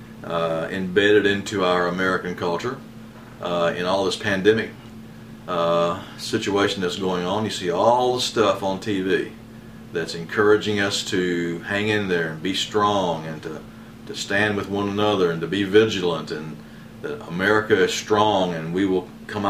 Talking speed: 165 wpm